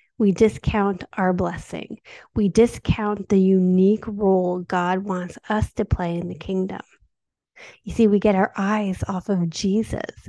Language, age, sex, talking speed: English, 30-49, female, 150 wpm